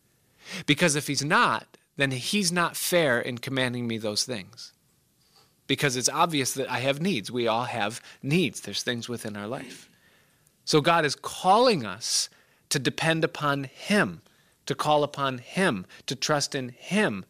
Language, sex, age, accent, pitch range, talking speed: English, male, 40-59, American, 120-160 Hz, 160 wpm